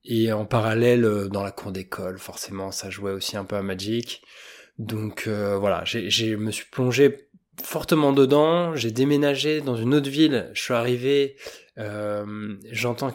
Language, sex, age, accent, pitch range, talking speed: French, male, 20-39, French, 105-130 Hz, 170 wpm